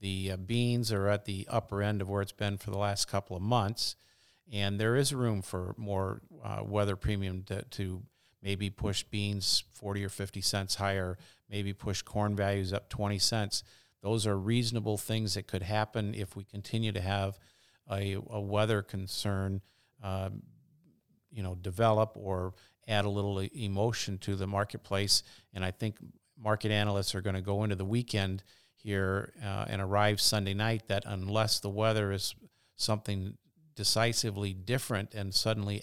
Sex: male